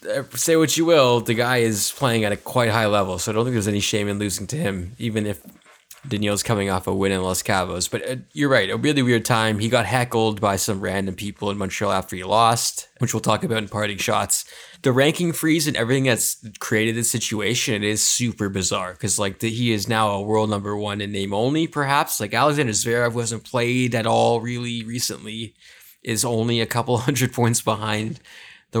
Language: English